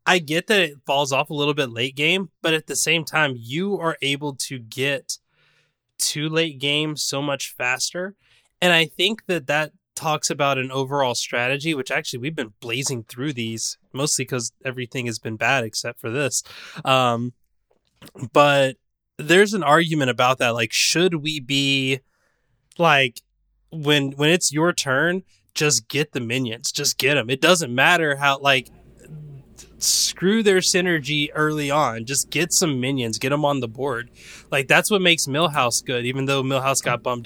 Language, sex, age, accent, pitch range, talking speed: English, male, 20-39, American, 125-155 Hz, 170 wpm